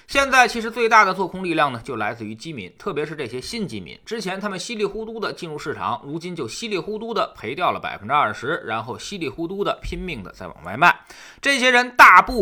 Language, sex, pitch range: Chinese, male, 150-240 Hz